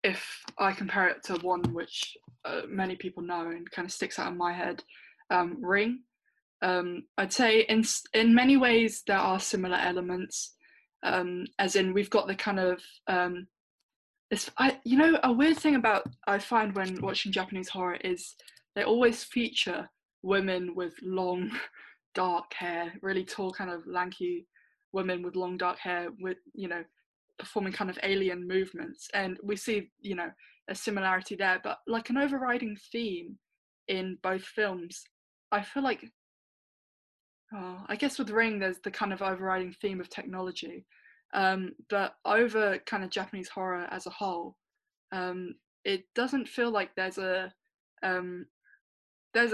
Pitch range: 180-225 Hz